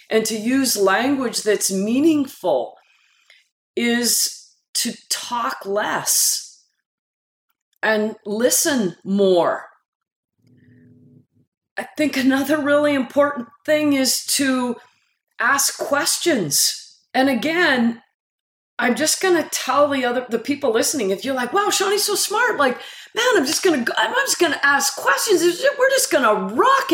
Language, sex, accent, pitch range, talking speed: English, female, American, 240-345 Hz, 125 wpm